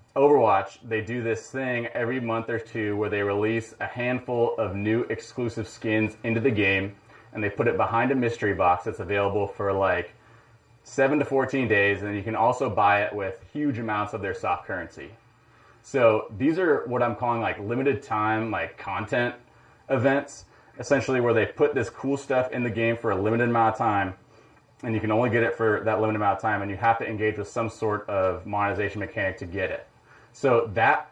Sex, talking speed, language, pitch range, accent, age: male, 205 wpm, English, 105-120 Hz, American, 30-49